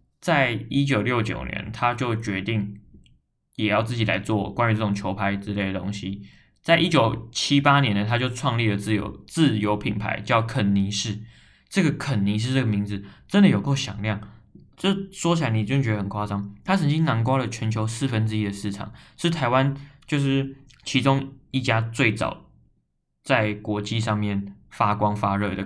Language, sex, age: Chinese, male, 20-39